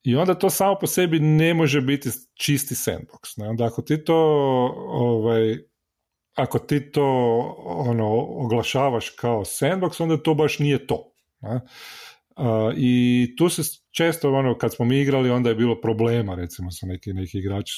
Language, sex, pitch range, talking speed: Croatian, male, 105-150 Hz, 160 wpm